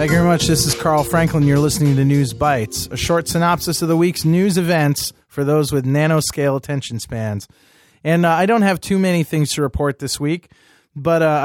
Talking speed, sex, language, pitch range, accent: 215 wpm, male, English, 130-160 Hz, American